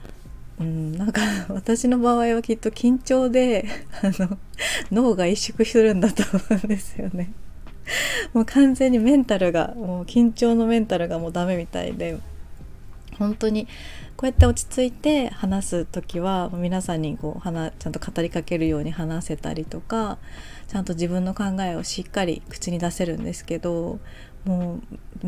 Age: 20-39